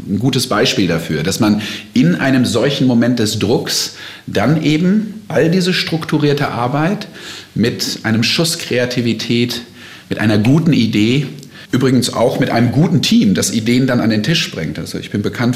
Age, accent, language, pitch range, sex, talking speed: 40-59, German, German, 95-130 Hz, male, 165 wpm